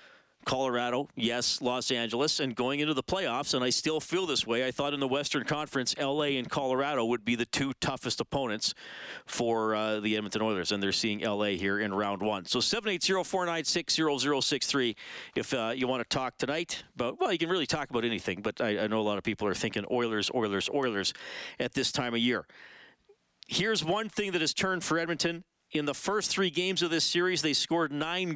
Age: 40-59